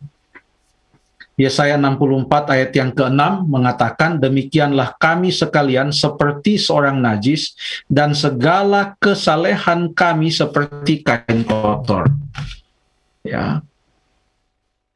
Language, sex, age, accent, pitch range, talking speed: Indonesian, male, 50-69, native, 130-155 Hz, 80 wpm